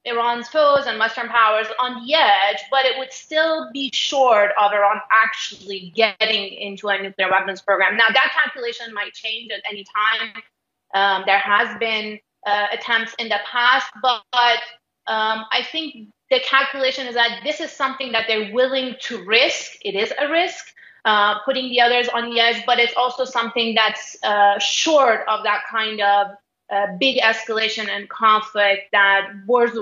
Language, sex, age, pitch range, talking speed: English, female, 20-39, 205-255 Hz, 175 wpm